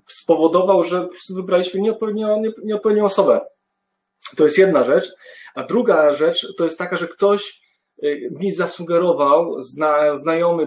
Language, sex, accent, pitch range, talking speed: Polish, male, native, 160-205 Hz, 130 wpm